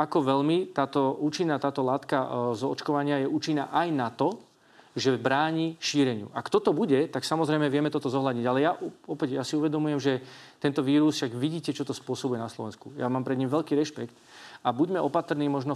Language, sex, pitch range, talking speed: Slovak, male, 125-145 Hz, 190 wpm